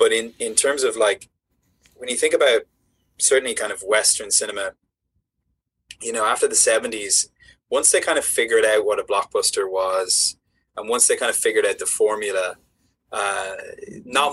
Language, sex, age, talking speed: English, male, 20-39, 170 wpm